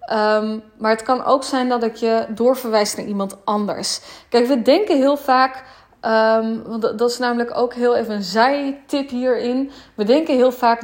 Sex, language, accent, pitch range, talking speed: female, Dutch, Dutch, 225-275 Hz, 190 wpm